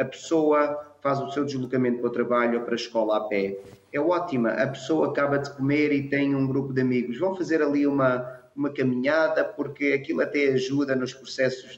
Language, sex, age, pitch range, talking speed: Portuguese, male, 30-49, 125-150 Hz, 205 wpm